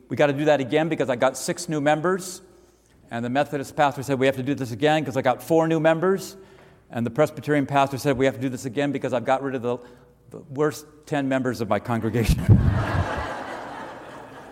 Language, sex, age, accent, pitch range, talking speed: English, male, 50-69, American, 130-160 Hz, 220 wpm